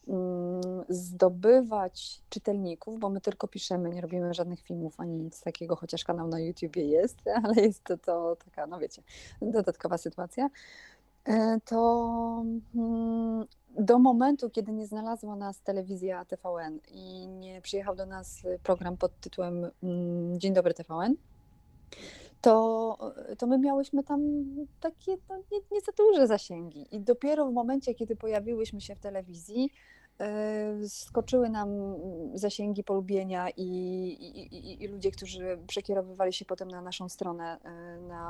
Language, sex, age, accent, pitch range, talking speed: Polish, female, 30-49, native, 180-230 Hz, 135 wpm